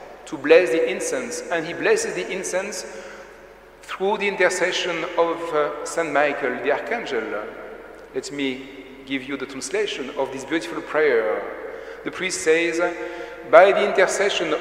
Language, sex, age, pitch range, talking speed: English, male, 40-59, 150-185 Hz, 135 wpm